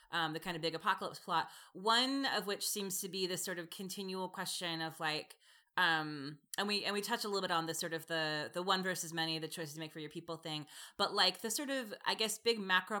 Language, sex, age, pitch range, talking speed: English, female, 20-39, 165-205 Hz, 255 wpm